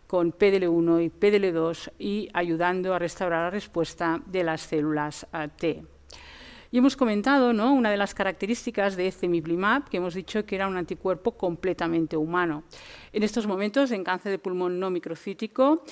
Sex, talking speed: female, 155 wpm